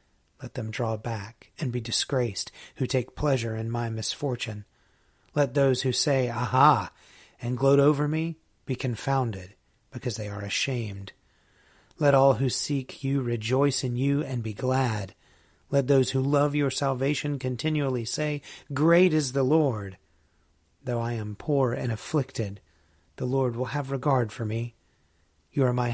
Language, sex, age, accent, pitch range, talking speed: English, male, 40-59, American, 110-140 Hz, 155 wpm